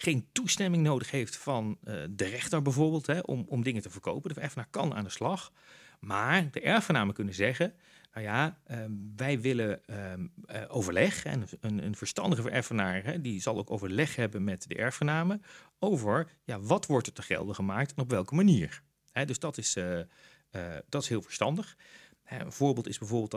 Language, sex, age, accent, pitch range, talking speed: Dutch, male, 40-59, Dutch, 105-160 Hz, 190 wpm